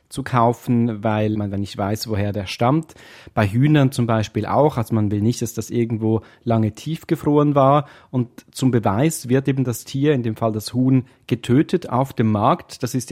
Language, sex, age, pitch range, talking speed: German, male, 30-49, 115-135 Hz, 195 wpm